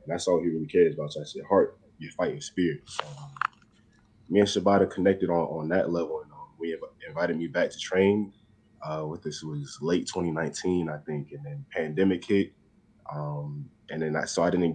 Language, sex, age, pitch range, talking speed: English, male, 20-39, 80-100 Hz, 210 wpm